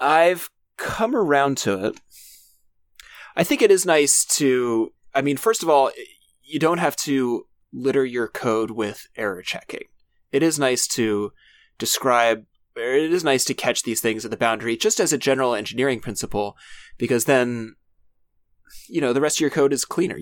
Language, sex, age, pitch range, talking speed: English, male, 20-39, 105-135 Hz, 175 wpm